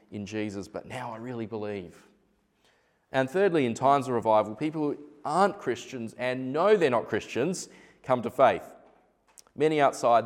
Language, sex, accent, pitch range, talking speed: English, male, Australian, 105-140 Hz, 160 wpm